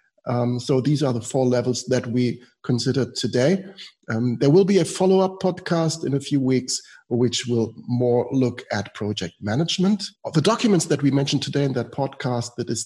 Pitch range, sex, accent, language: 120-150 Hz, male, German, English